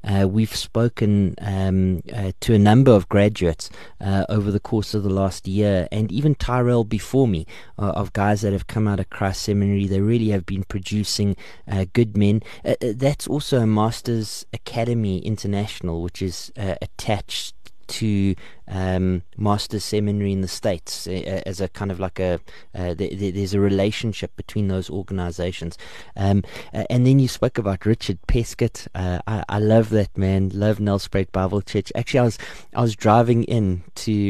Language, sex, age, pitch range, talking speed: English, male, 30-49, 95-110 Hz, 180 wpm